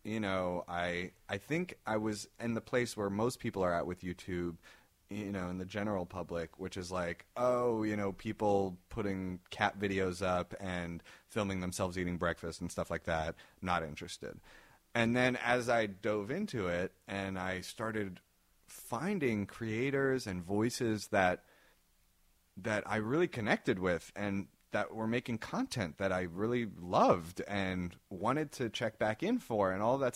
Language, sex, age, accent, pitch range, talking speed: English, male, 30-49, American, 90-110 Hz, 165 wpm